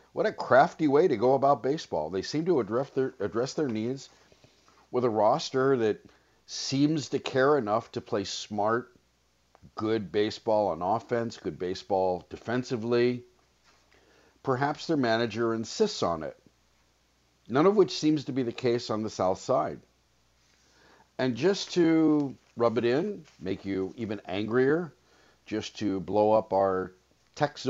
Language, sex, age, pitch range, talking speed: English, male, 50-69, 95-135 Hz, 145 wpm